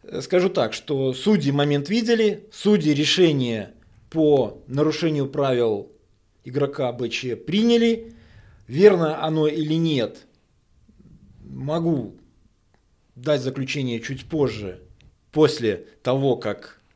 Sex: male